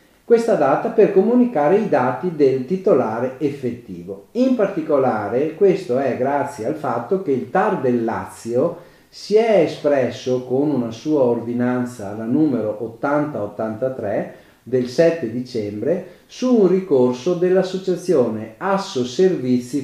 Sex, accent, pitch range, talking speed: male, native, 120-180 Hz, 120 wpm